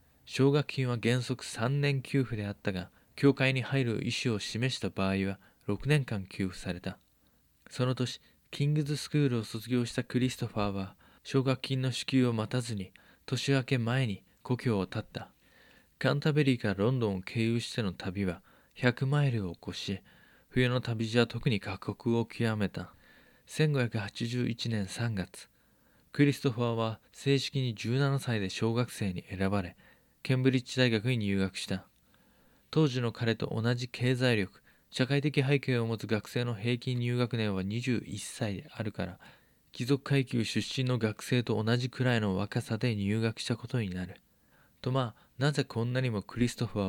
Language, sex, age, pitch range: Japanese, male, 20-39, 105-130 Hz